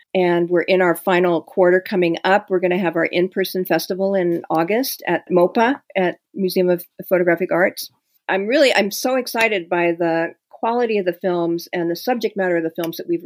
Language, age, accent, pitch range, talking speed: English, 50-69, American, 170-195 Hz, 200 wpm